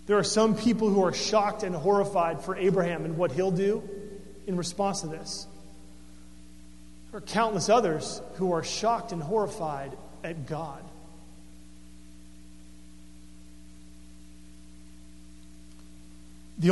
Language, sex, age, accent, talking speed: English, male, 40-59, American, 110 wpm